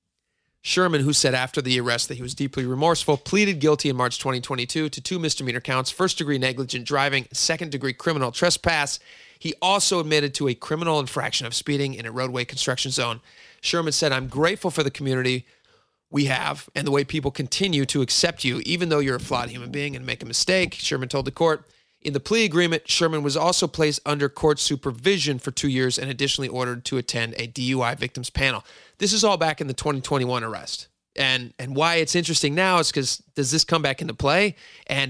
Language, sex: English, male